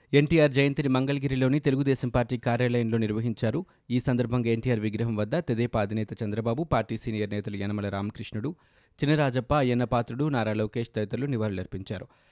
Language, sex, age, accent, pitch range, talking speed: Telugu, male, 20-39, native, 110-135 Hz, 125 wpm